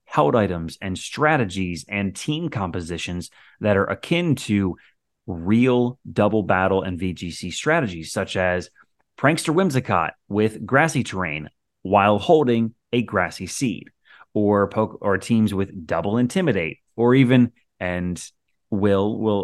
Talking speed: 125 wpm